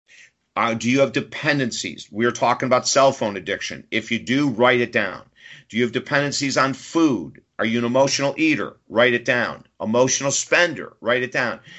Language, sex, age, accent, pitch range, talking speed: English, male, 50-69, American, 115-140 Hz, 185 wpm